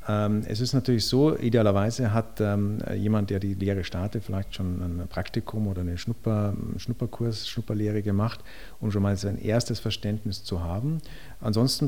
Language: German